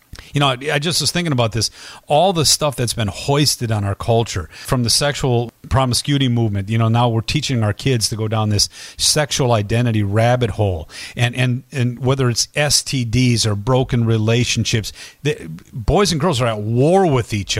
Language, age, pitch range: English, 40-59, 115-140 Hz